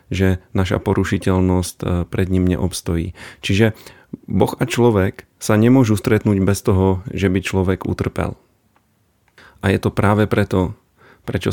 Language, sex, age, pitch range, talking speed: Slovak, male, 30-49, 95-110 Hz, 130 wpm